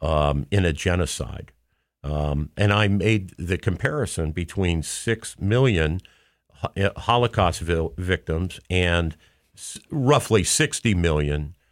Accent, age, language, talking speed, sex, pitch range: American, 50-69, English, 95 wpm, male, 85-110 Hz